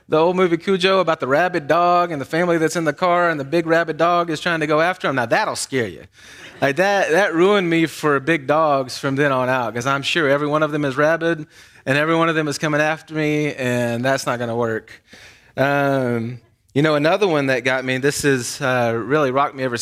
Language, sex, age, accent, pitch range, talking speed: English, male, 30-49, American, 125-160 Hz, 245 wpm